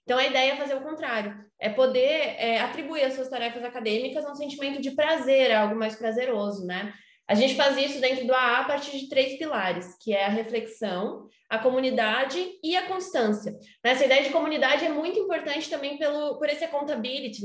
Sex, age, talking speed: female, 20-39, 195 wpm